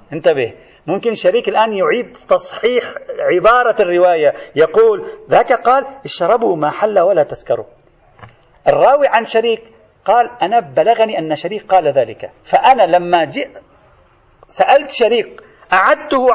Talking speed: 115 wpm